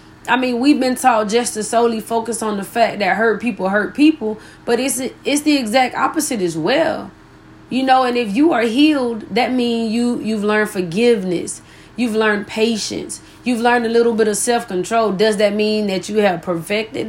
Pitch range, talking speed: 205-245 Hz, 190 wpm